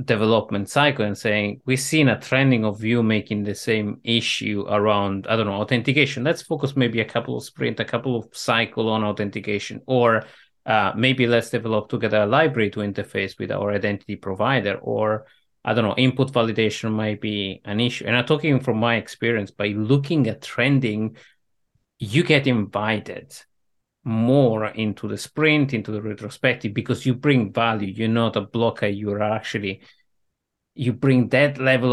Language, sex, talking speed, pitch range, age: English, male, 170 wpm, 105-130 Hz, 30-49